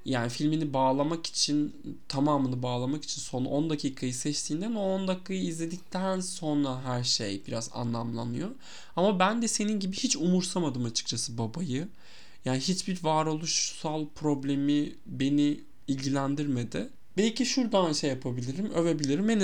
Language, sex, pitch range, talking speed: Turkish, male, 130-190 Hz, 125 wpm